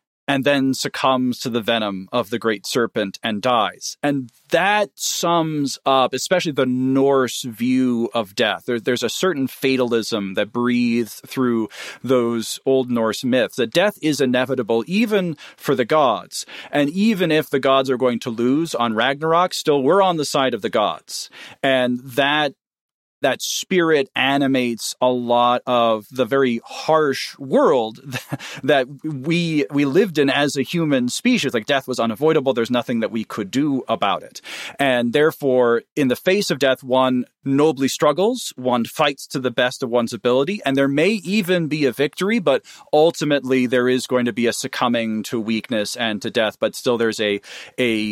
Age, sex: 40-59, male